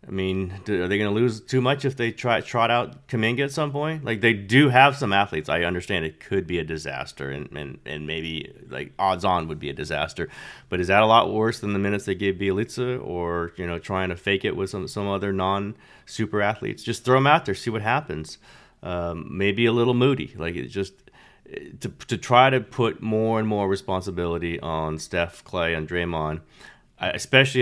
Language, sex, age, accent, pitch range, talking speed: English, male, 30-49, American, 85-110 Hz, 215 wpm